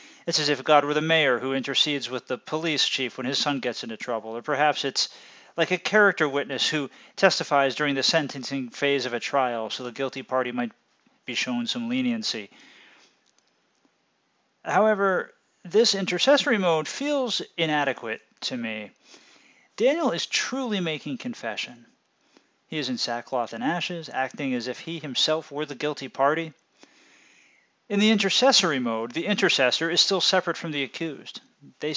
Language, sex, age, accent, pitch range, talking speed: English, male, 40-59, American, 135-185 Hz, 160 wpm